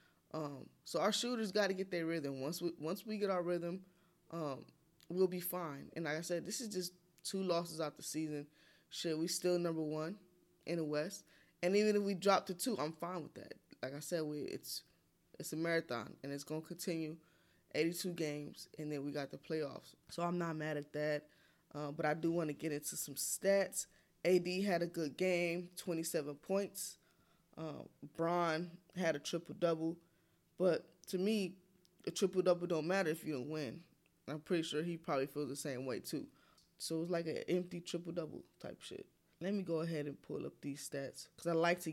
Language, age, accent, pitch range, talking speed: English, 20-39, American, 155-185 Hz, 205 wpm